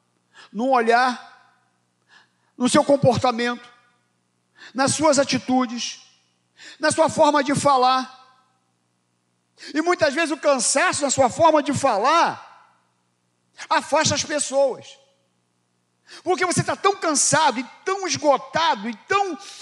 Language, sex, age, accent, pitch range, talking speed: Portuguese, male, 50-69, Brazilian, 235-360 Hz, 110 wpm